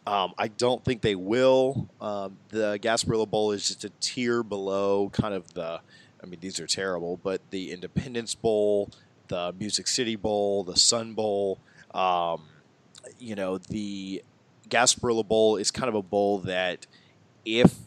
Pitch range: 95-115 Hz